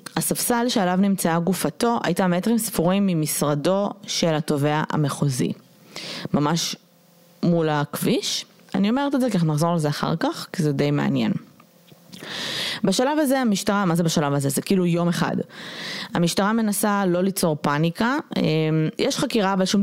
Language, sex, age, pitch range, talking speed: Hebrew, female, 20-39, 155-205 Hz, 145 wpm